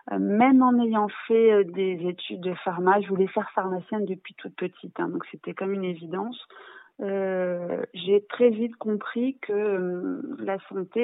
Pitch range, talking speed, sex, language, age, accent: 175-210 Hz, 165 wpm, female, French, 30-49, French